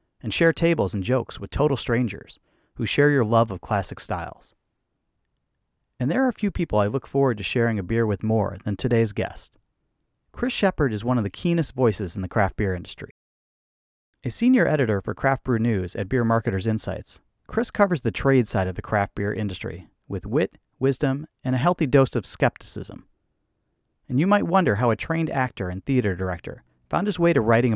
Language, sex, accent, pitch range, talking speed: English, male, American, 100-140 Hz, 200 wpm